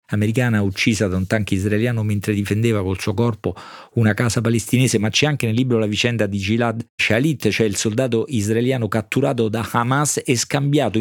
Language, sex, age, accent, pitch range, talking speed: Italian, male, 40-59, native, 95-120 Hz, 180 wpm